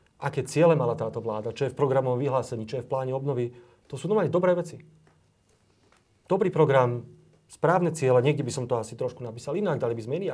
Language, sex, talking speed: Slovak, male, 210 wpm